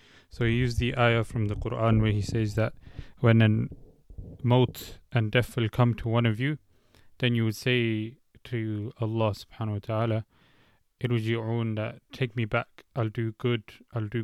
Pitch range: 105-120 Hz